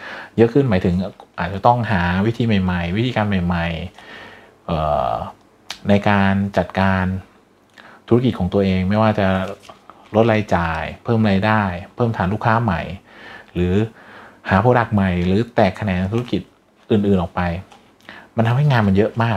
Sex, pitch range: male, 95-115 Hz